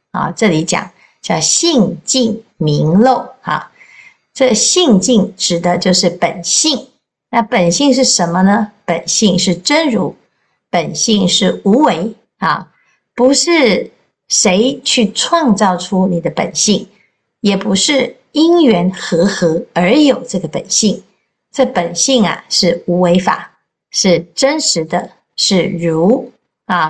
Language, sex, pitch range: Chinese, female, 175-250 Hz